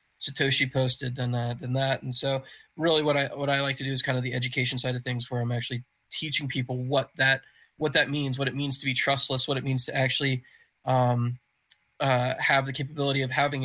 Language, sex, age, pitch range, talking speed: English, male, 20-39, 130-140 Hz, 230 wpm